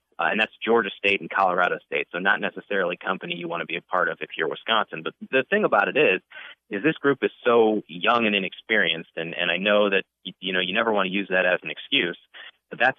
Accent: American